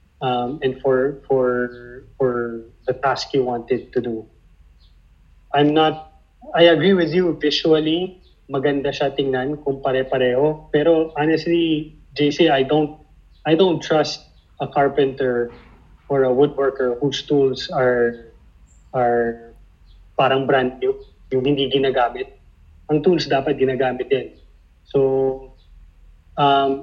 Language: Filipino